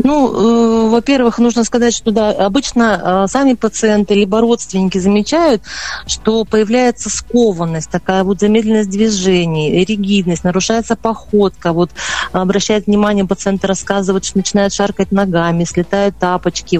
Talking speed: 125 wpm